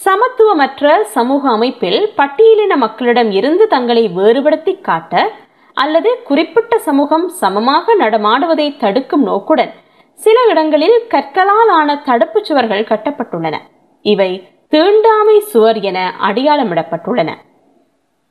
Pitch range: 220-320 Hz